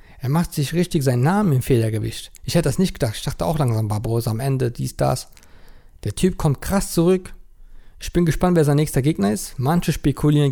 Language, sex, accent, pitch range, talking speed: German, male, German, 110-145 Hz, 210 wpm